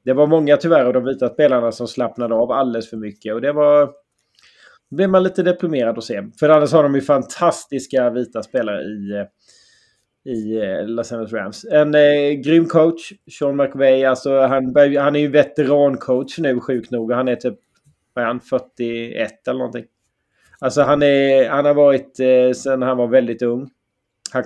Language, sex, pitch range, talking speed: Swedish, male, 115-145 Hz, 180 wpm